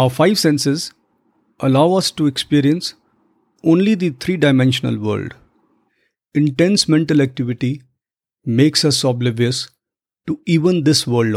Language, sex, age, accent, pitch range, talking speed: English, male, 50-69, Indian, 125-155 Hz, 110 wpm